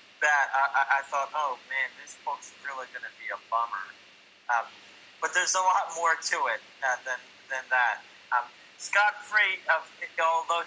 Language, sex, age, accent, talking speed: English, male, 30-49, American, 170 wpm